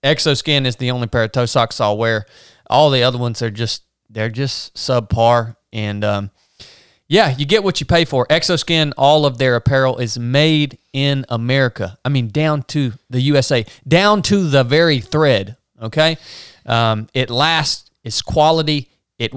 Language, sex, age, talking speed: English, male, 30-49, 170 wpm